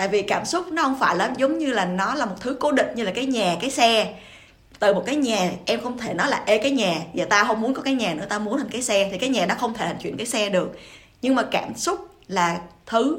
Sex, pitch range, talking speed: female, 190-260 Hz, 295 wpm